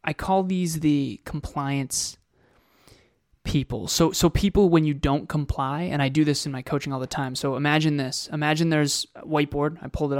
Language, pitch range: English, 135-155 Hz